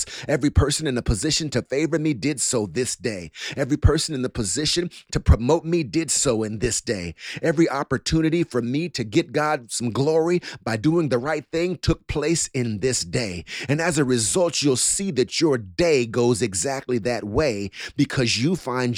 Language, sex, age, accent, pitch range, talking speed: English, male, 30-49, American, 115-155 Hz, 190 wpm